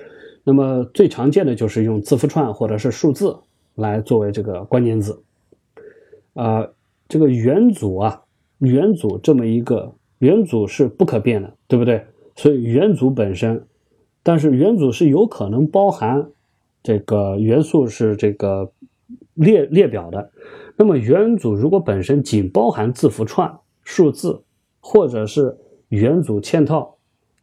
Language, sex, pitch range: Chinese, male, 110-145 Hz